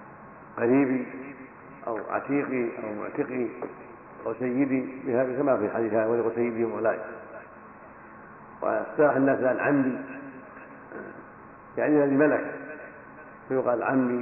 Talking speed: 95 wpm